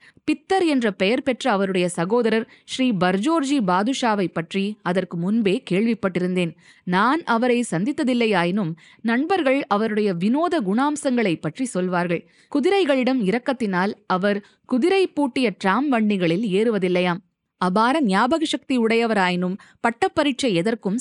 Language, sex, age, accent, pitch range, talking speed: Tamil, female, 20-39, native, 180-260 Hz, 105 wpm